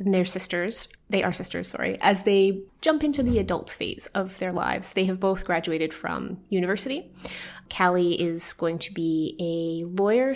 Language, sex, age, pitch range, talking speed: English, female, 20-39, 175-200 Hz, 170 wpm